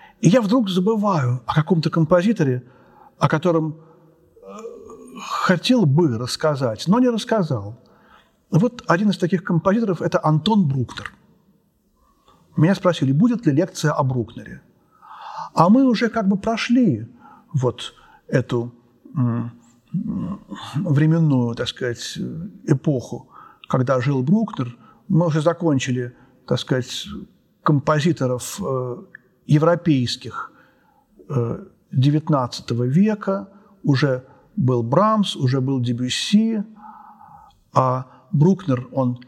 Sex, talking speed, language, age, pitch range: male, 95 wpm, Russian, 50-69, 130-190 Hz